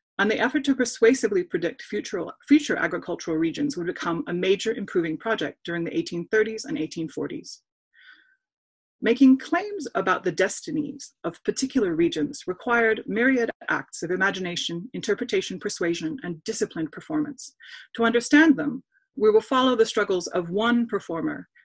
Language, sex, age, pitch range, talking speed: English, female, 30-49, 175-265 Hz, 135 wpm